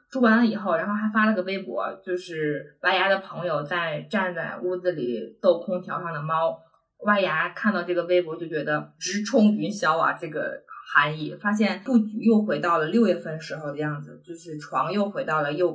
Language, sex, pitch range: Chinese, female, 165-210 Hz